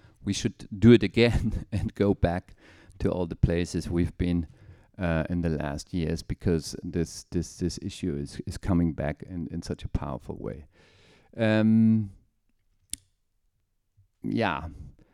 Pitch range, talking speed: 85-100 Hz, 145 wpm